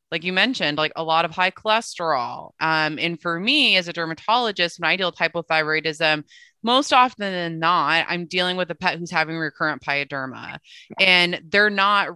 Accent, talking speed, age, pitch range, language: American, 185 wpm, 20-39, 160-190 Hz, English